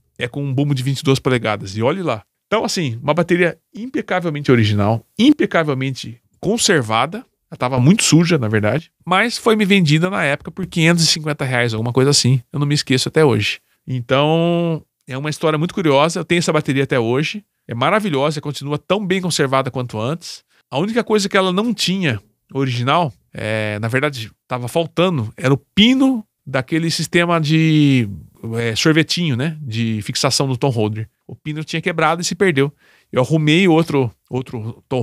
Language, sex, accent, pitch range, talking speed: Portuguese, male, Brazilian, 125-175 Hz, 175 wpm